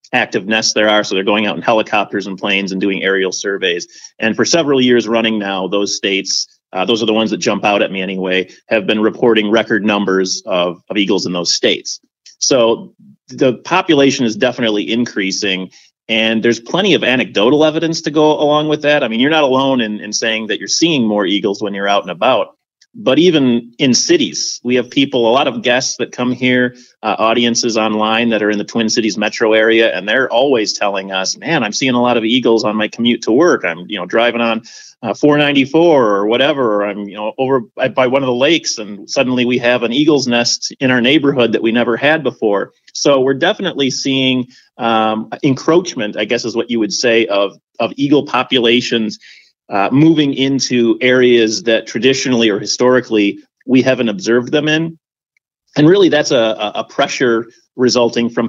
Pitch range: 105-130 Hz